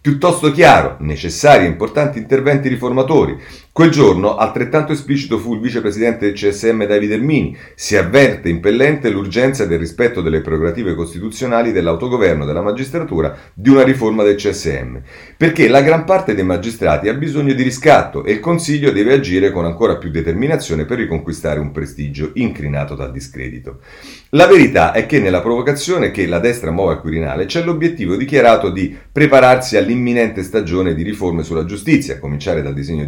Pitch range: 80-125 Hz